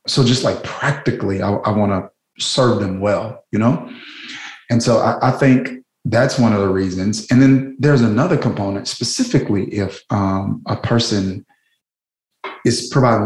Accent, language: American, English